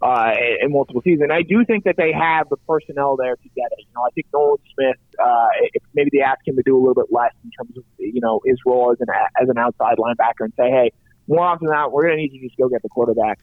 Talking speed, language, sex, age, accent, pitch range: 285 wpm, English, male, 30-49, American, 120-150 Hz